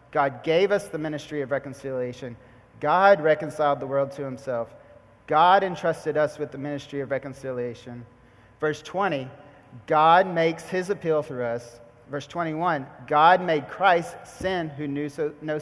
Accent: American